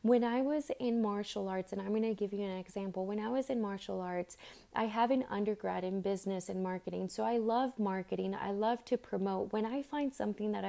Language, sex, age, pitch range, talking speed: English, female, 20-39, 195-230 Hz, 230 wpm